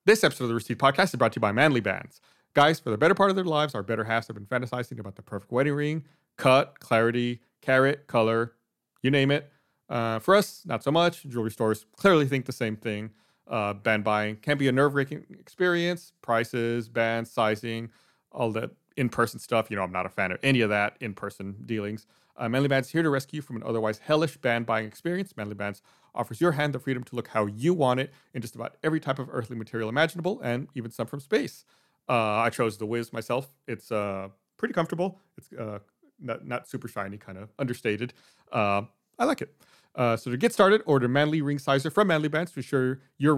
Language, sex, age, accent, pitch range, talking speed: English, male, 30-49, American, 115-150 Hz, 215 wpm